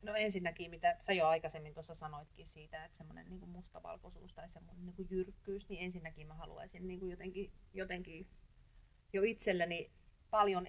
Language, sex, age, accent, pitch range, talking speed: Finnish, female, 30-49, native, 150-185 Hz, 135 wpm